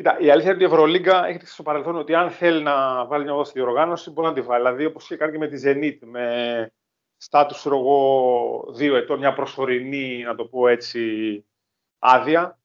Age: 30-49